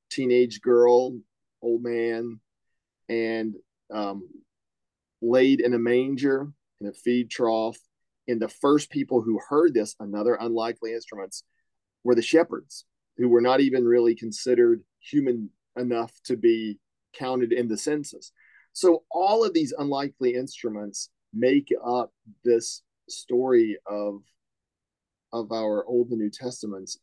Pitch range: 110-130 Hz